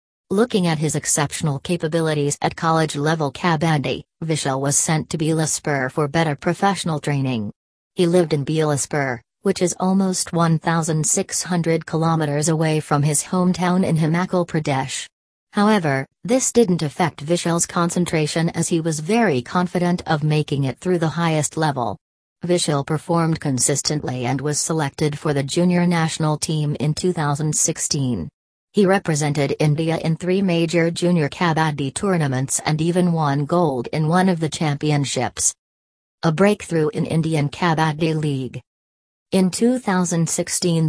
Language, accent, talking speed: English, American, 135 wpm